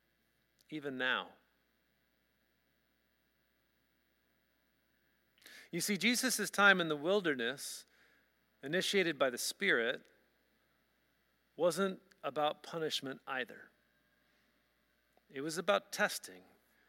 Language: English